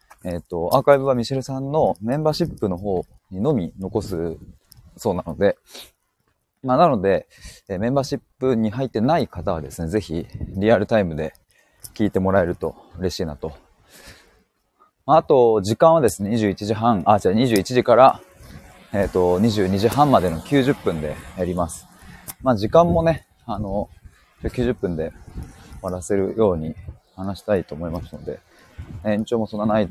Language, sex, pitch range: Japanese, male, 85-115 Hz